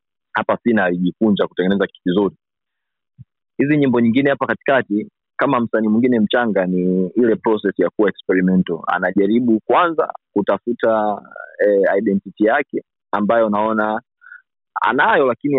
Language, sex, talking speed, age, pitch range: Swahili, male, 115 wpm, 30-49, 95-115 Hz